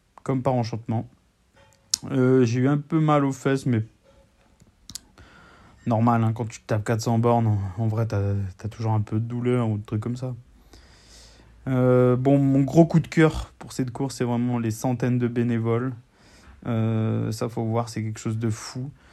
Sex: male